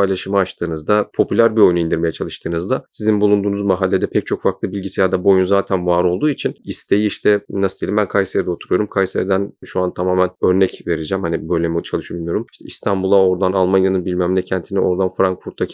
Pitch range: 90-110 Hz